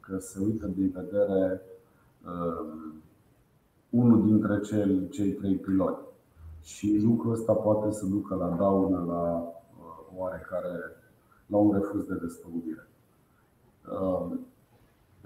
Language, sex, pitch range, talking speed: Romanian, male, 95-105 Hz, 115 wpm